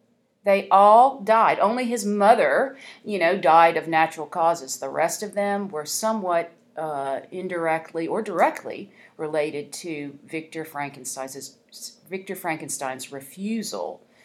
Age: 40-59